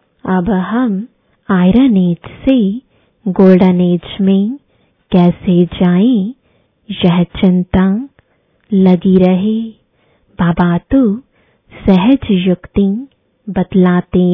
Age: 20-39